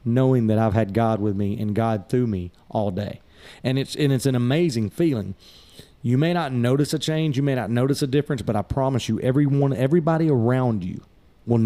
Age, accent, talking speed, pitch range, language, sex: 30-49, American, 210 wpm, 105-135 Hz, English, male